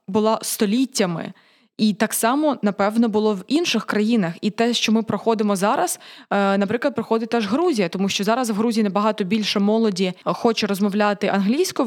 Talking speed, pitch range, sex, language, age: 155 wpm, 200-230 Hz, female, Ukrainian, 20-39